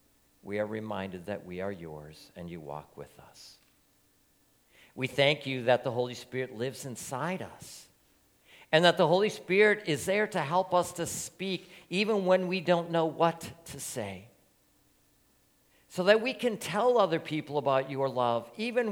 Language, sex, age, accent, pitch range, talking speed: English, male, 50-69, American, 120-175 Hz, 170 wpm